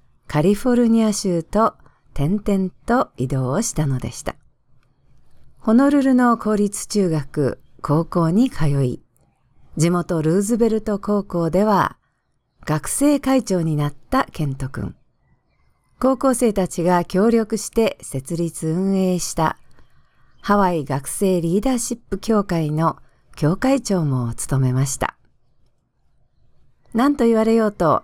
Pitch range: 150-220 Hz